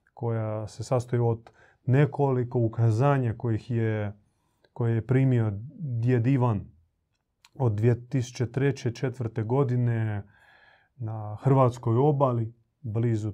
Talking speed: 90 wpm